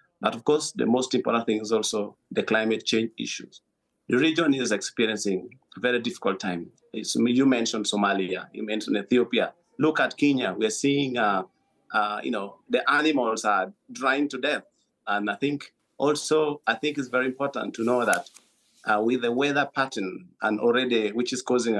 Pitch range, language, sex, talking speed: 110-140 Hz, English, male, 175 wpm